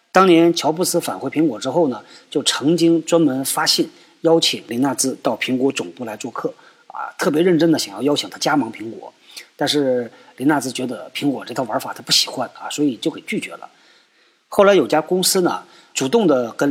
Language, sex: Chinese, male